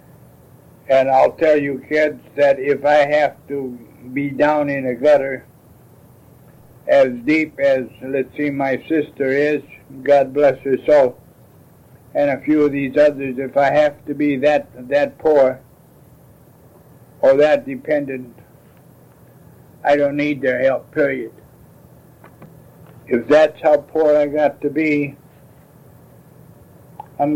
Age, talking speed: 60-79, 130 wpm